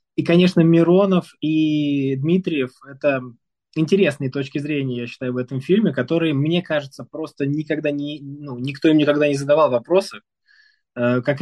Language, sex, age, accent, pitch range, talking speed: Russian, male, 20-39, native, 130-165 Hz, 145 wpm